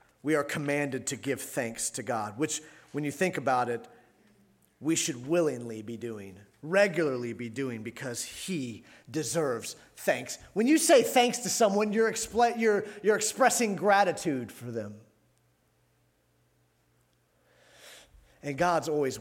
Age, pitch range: 40-59, 110-170 Hz